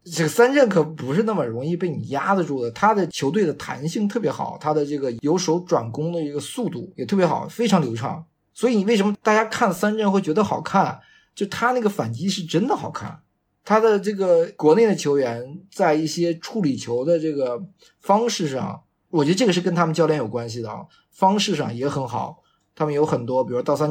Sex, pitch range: male, 125-180 Hz